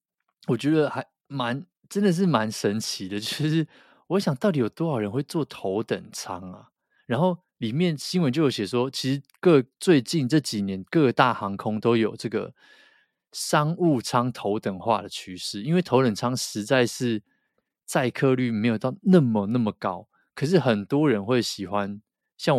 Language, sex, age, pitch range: Chinese, male, 20-39, 105-135 Hz